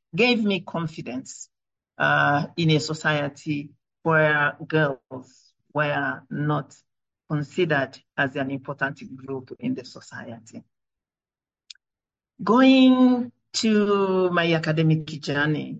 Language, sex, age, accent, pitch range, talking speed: English, male, 50-69, Nigerian, 150-195 Hz, 90 wpm